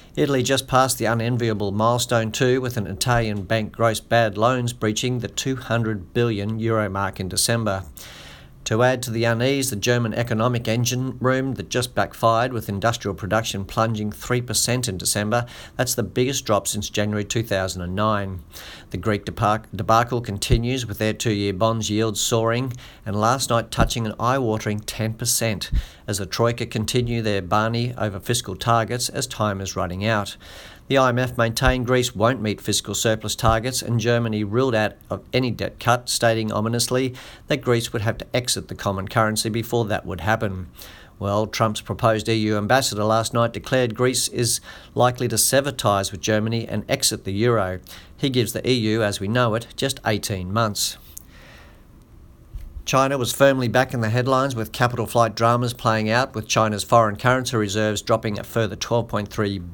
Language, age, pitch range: English, 50-69, 105-120 Hz